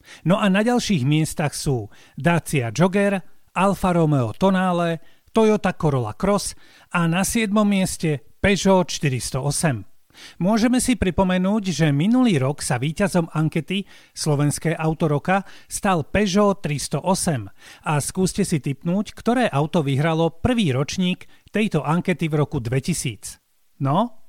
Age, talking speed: 40-59, 120 wpm